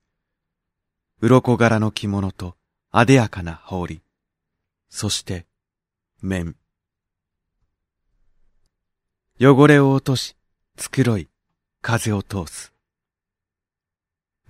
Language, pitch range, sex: Japanese, 85-110 Hz, male